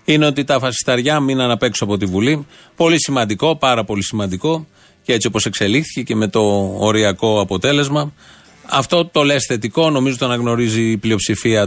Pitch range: 115-140 Hz